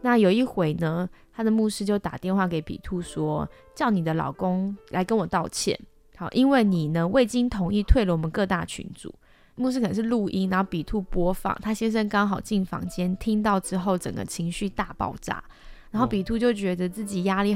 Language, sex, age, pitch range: Chinese, female, 20-39, 175-210 Hz